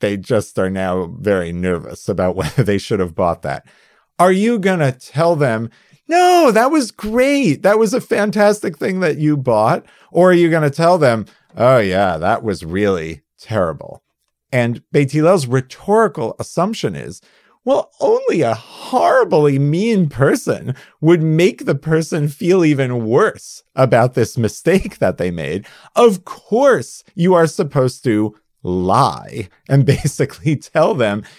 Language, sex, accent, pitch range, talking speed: English, male, American, 110-170 Hz, 150 wpm